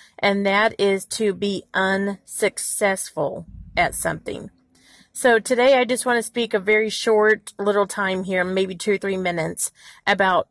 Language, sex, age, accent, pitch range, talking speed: English, female, 40-59, American, 190-220 Hz, 155 wpm